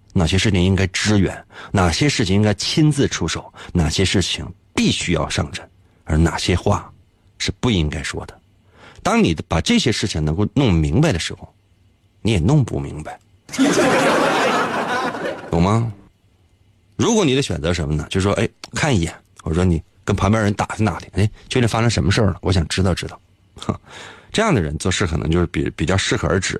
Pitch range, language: 90-110 Hz, Chinese